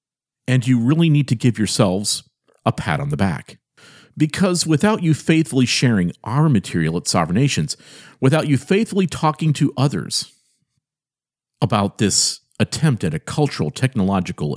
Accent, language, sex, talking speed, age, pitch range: American, English, male, 145 wpm, 50-69, 100-150 Hz